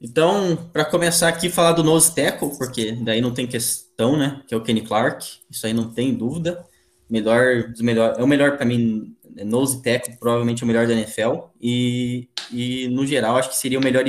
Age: 10-29